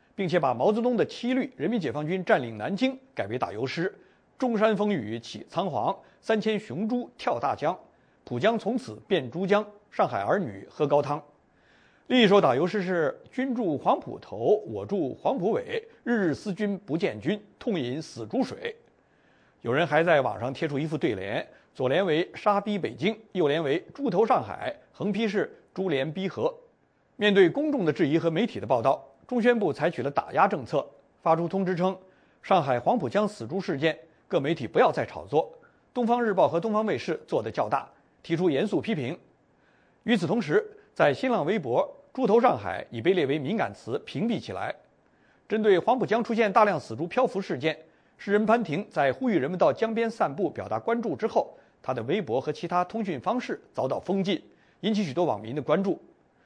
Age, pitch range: 50-69, 175-235 Hz